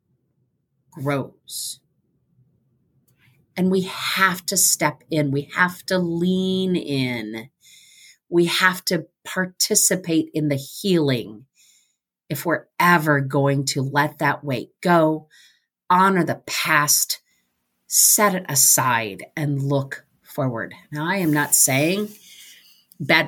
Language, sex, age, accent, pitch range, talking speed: English, female, 40-59, American, 135-180 Hz, 110 wpm